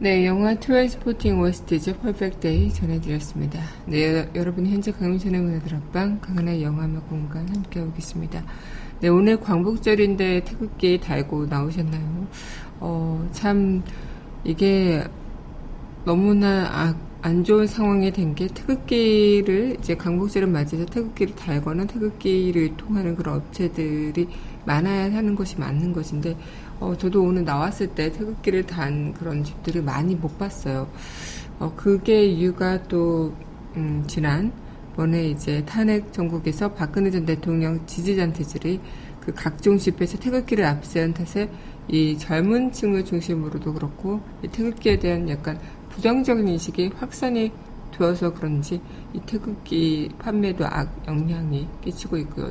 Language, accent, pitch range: Korean, native, 160-200 Hz